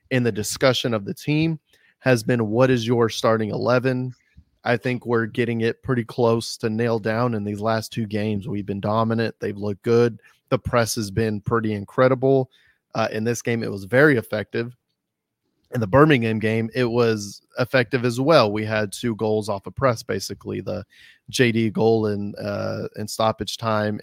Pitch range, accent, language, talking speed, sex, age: 105-120 Hz, American, English, 180 wpm, male, 30-49